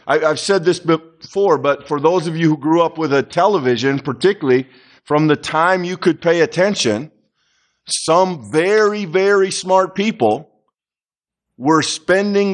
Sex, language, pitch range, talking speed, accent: male, English, 120-160 Hz, 145 wpm, American